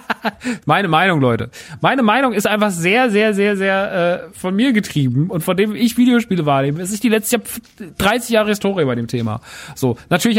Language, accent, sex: German, German, male